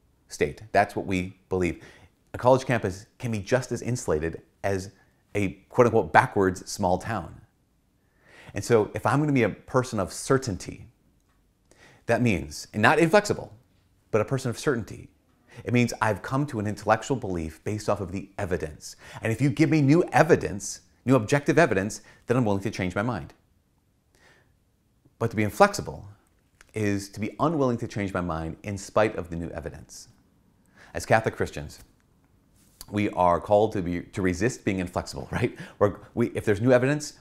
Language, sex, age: English, male, 30-49